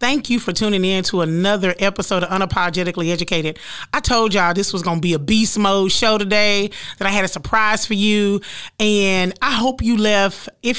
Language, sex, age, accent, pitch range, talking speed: English, male, 30-49, American, 200-260 Hz, 205 wpm